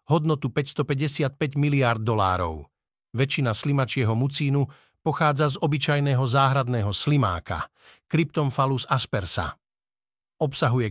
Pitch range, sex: 135-160 Hz, male